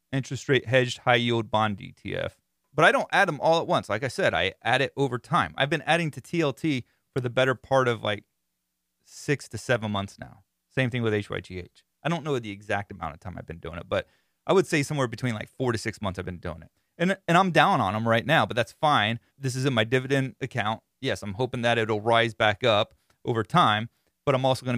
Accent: American